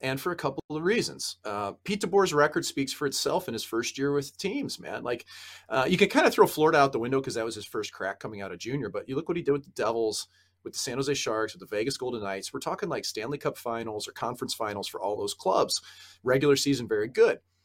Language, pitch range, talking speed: English, 110-155 Hz, 260 wpm